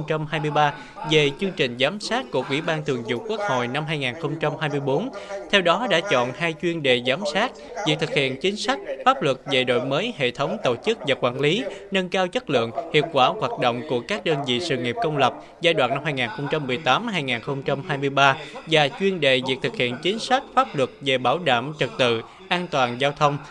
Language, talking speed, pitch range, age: Vietnamese, 200 wpm, 130-185 Hz, 20-39